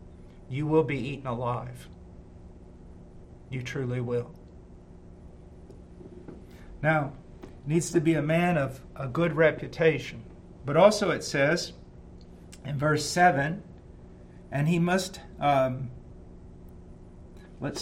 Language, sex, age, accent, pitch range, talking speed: English, male, 50-69, American, 120-160 Hz, 100 wpm